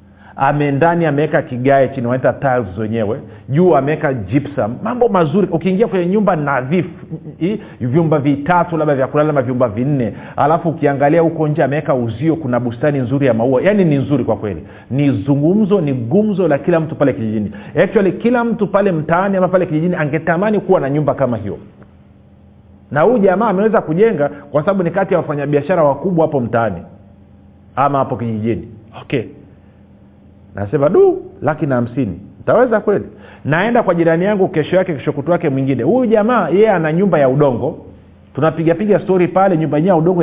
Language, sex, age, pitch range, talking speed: Swahili, male, 40-59, 120-180 Hz, 165 wpm